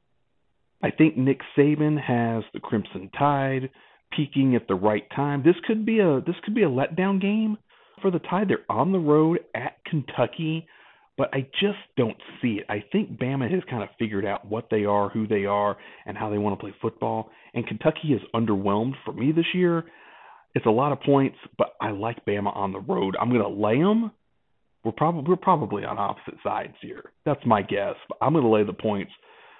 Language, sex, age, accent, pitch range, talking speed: English, male, 40-59, American, 105-160 Hz, 205 wpm